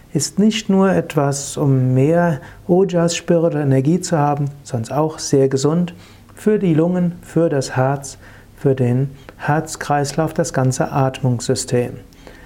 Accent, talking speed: German, 135 wpm